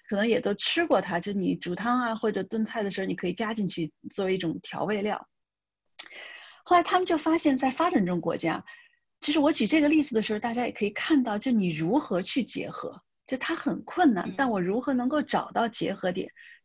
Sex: female